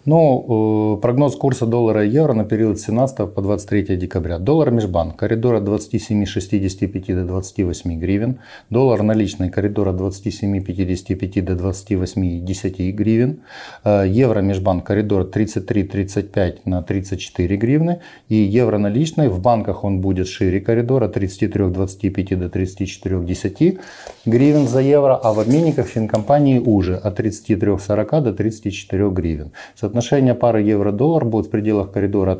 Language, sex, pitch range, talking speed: Ukrainian, male, 95-115 Hz, 125 wpm